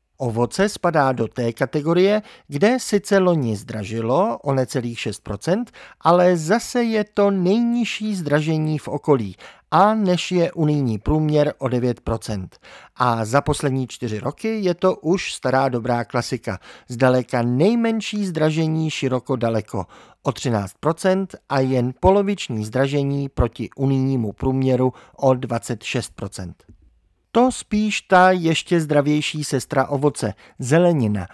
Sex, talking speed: male, 120 wpm